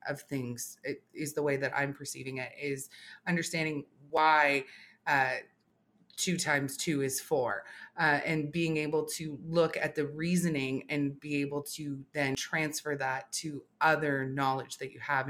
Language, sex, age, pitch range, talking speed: English, female, 20-39, 135-155 Hz, 155 wpm